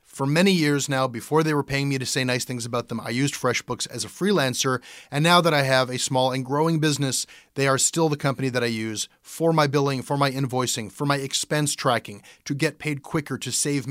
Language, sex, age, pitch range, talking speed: English, male, 30-49, 120-150 Hz, 235 wpm